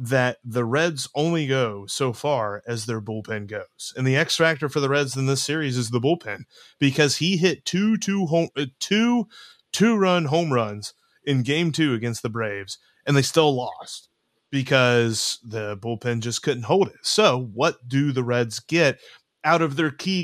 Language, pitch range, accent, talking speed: English, 120-155 Hz, American, 185 wpm